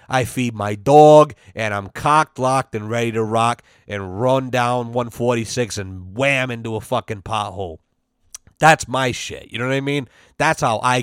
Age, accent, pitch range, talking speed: 30-49, American, 115-140 Hz, 180 wpm